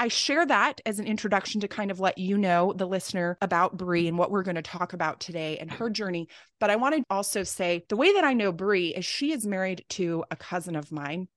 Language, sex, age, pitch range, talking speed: English, female, 20-39, 175-215 Hz, 255 wpm